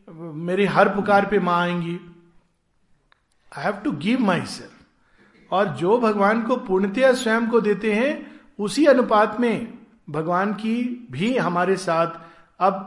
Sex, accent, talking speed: male, native, 140 wpm